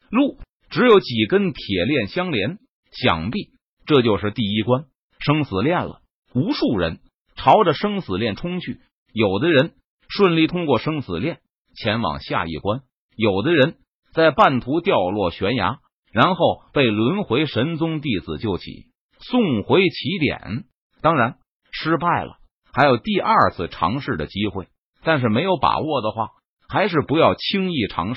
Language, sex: Chinese, male